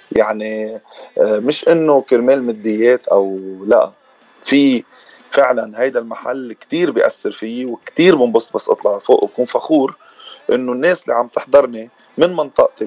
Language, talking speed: Arabic, 135 wpm